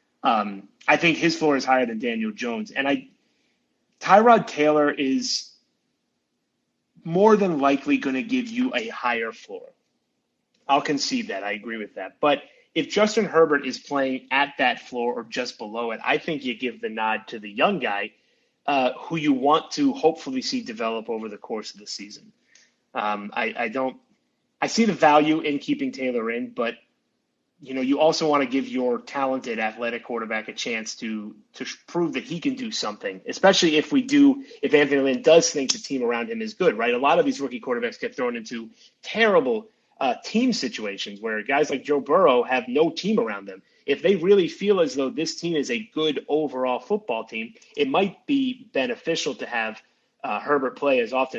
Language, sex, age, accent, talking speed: English, male, 30-49, American, 195 wpm